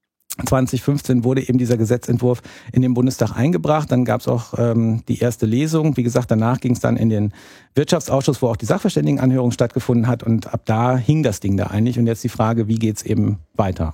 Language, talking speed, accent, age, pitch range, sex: German, 205 wpm, German, 50-69, 115-140 Hz, male